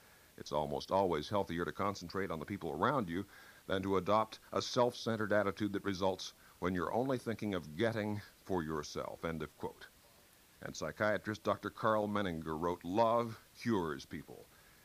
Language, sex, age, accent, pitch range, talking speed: English, male, 60-79, American, 90-120 Hz, 160 wpm